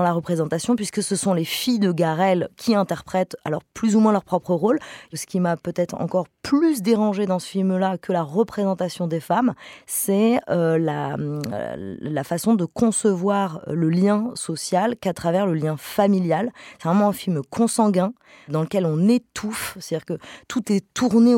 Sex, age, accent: female, 20-39, French